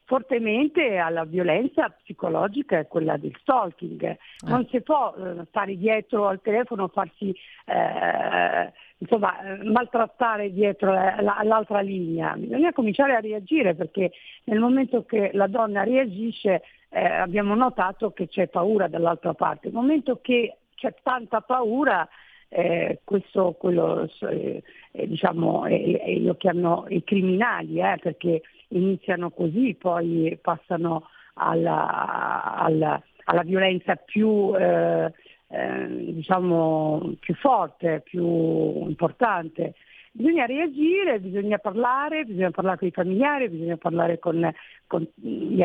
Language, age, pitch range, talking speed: Italian, 50-69, 175-240 Hz, 120 wpm